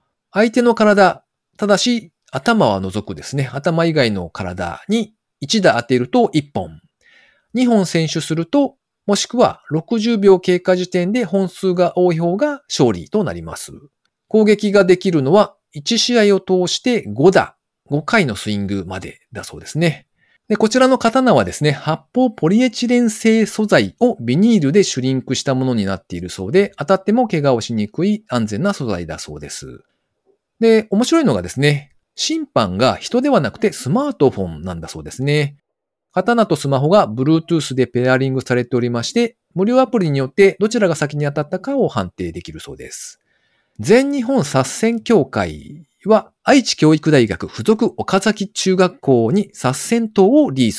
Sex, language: male, Japanese